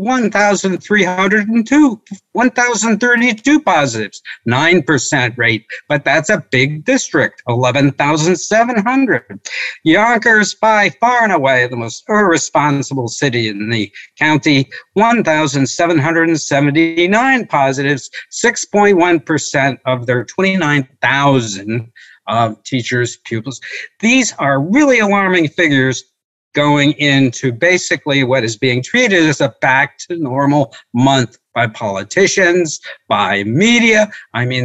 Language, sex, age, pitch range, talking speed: English, male, 60-79, 135-220 Hz, 95 wpm